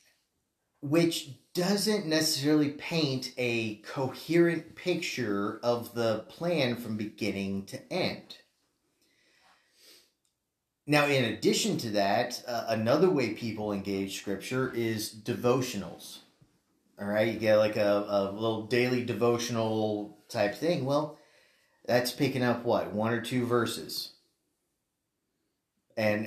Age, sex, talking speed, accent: 30-49, male, 110 wpm, American